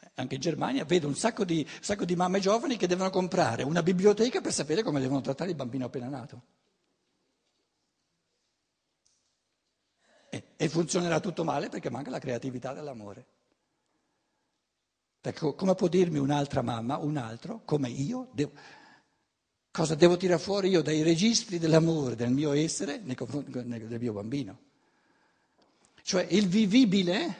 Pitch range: 135-195 Hz